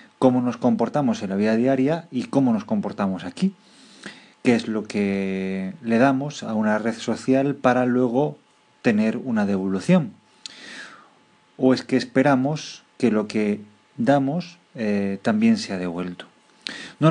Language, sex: English, male